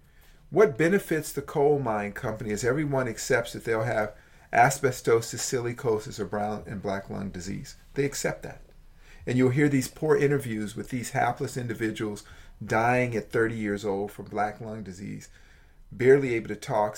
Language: English